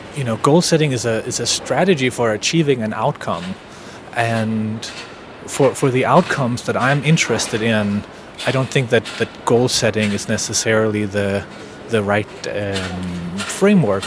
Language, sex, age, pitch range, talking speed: English, male, 30-49, 105-125 Hz, 155 wpm